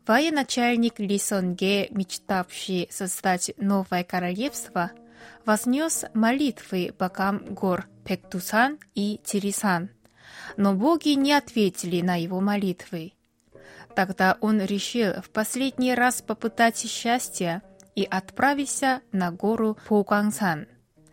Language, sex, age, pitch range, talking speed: Russian, female, 20-39, 190-250 Hz, 95 wpm